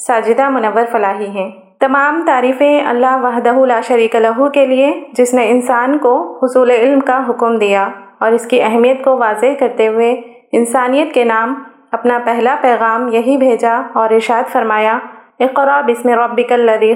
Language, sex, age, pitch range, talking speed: Urdu, female, 30-49, 225-265 Hz, 165 wpm